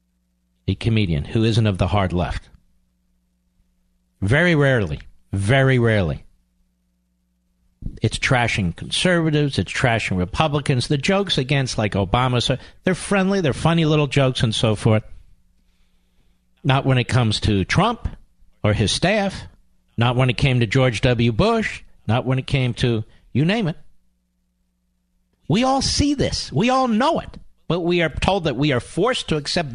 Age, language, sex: 50-69, English, male